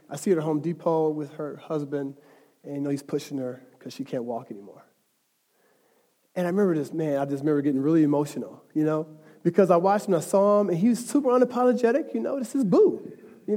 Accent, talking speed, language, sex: American, 225 wpm, English, male